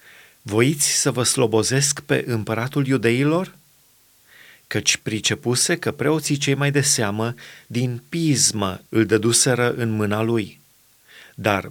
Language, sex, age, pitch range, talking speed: Romanian, male, 30-49, 115-145 Hz, 120 wpm